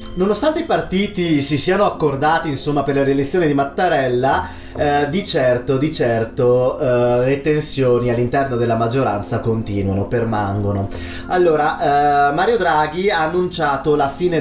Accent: native